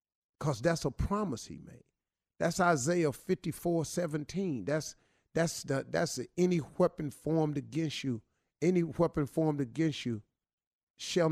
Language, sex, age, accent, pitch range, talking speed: English, male, 50-69, American, 150-205 Hz, 140 wpm